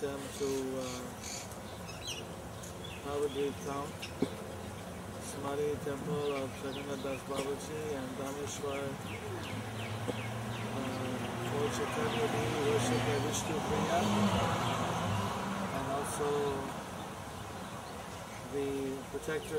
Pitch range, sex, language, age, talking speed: 105-140 Hz, male, English, 20-39, 65 wpm